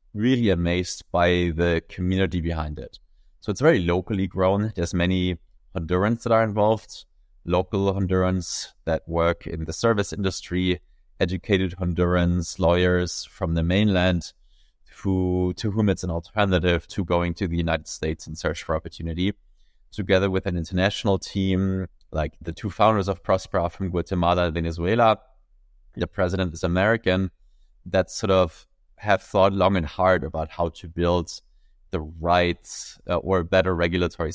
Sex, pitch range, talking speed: male, 85-95 Hz, 145 wpm